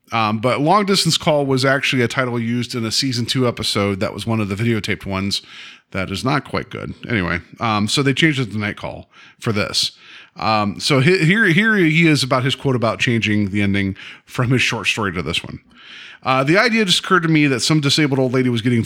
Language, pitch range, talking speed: English, 120-155 Hz, 230 wpm